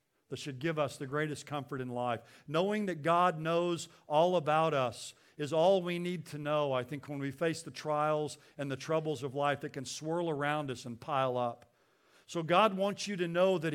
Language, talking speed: English, 215 wpm